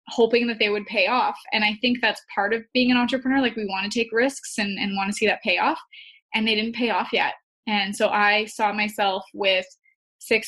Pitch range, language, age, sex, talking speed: 205-230 Hz, English, 20-39, female, 240 wpm